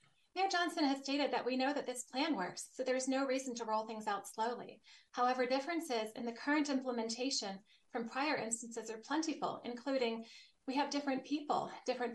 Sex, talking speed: female, 185 wpm